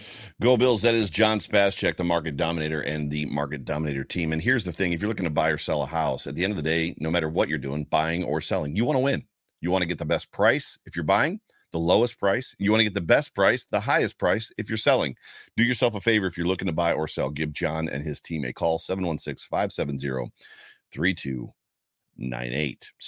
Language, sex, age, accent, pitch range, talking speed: English, male, 40-59, American, 90-120 Hz, 235 wpm